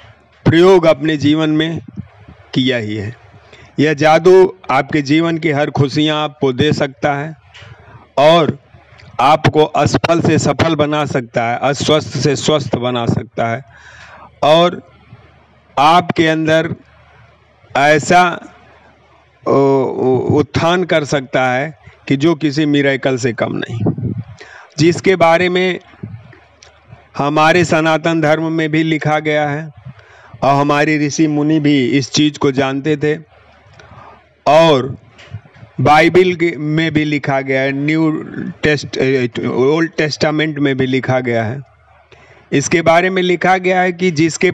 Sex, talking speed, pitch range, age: male, 130 wpm, 130-160 Hz, 50-69